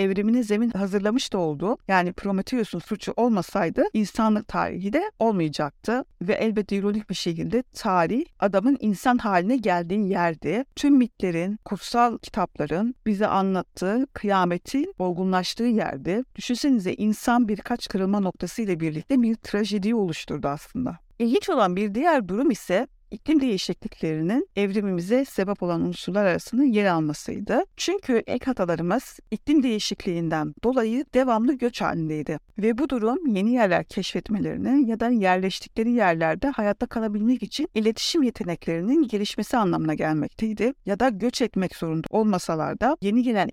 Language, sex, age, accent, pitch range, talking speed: Turkish, female, 50-69, native, 180-240 Hz, 130 wpm